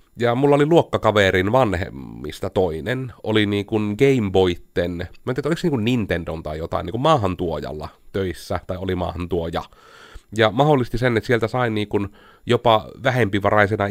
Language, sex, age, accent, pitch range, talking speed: Finnish, male, 30-49, native, 90-125 Hz, 140 wpm